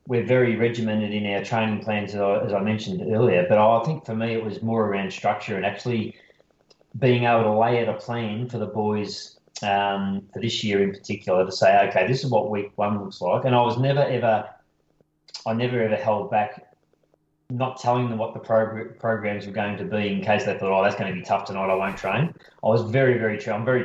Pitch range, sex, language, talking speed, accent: 100-115 Hz, male, English, 230 wpm, Australian